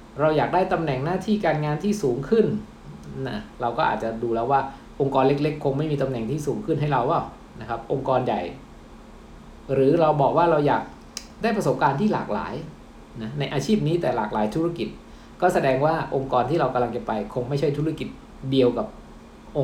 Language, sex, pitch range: Thai, male, 120-155 Hz